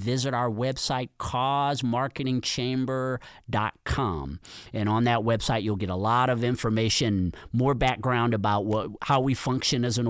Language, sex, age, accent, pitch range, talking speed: English, male, 40-59, American, 110-135 Hz, 135 wpm